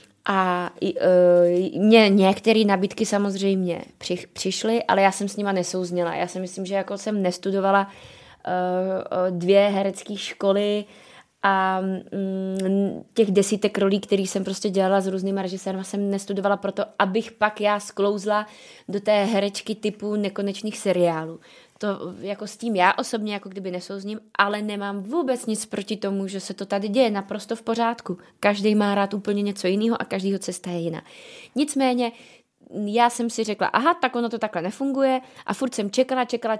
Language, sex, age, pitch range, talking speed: Czech, female, 20-39, 190-215 Hz, 165 wpm